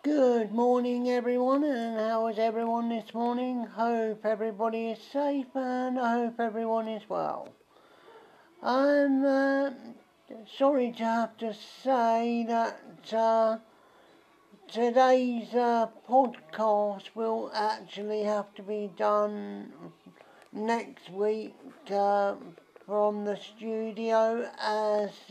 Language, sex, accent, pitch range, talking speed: English, male, British, 205-235 Hz, 105 wpm